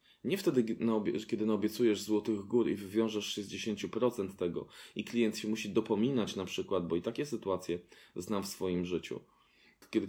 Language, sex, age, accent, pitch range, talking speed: Polish, male, 20-39, native, 90-115 Hz, 155 wpm